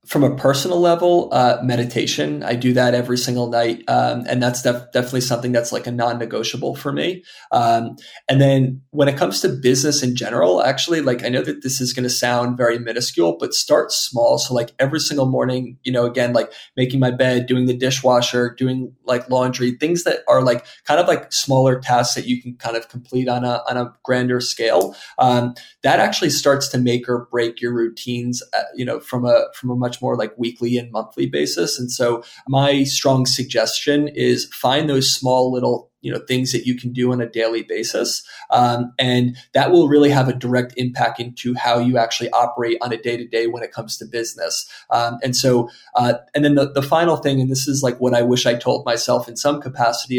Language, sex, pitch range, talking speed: English, male, 120-130 Hz, 215 wpm